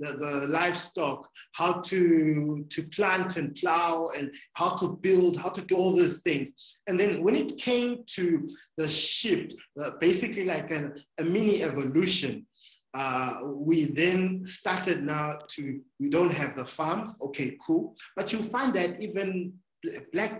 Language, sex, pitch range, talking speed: English, male, 140-185 Hz, 155 wpm